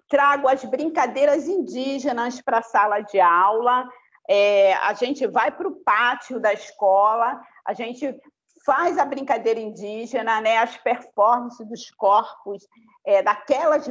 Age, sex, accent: 40-59, female, Brazilian